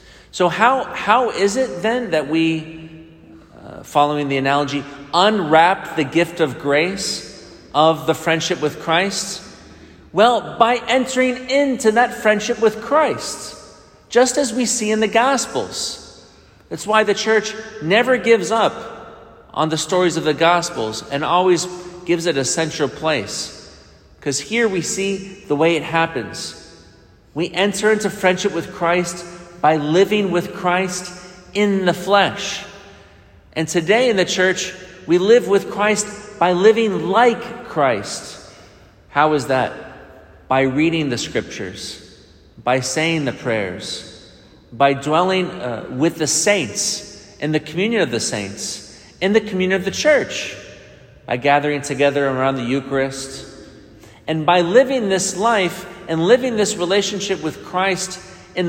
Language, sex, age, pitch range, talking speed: English, male, 40-59, 155-210 Hz, 140 wpm